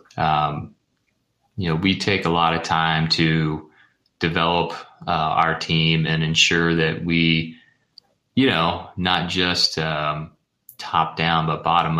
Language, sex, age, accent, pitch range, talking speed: English, male, 30-49, American, 80-90 Hz, 135 wpm